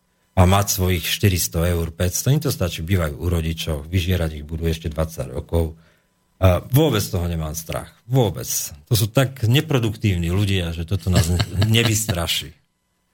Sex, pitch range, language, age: male, 90-120 Hz, Slovak, 40-59